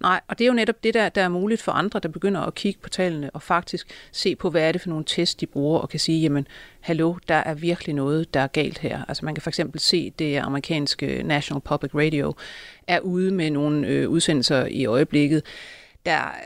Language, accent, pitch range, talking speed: Danish, native, 155-200 Hz, 235 wpm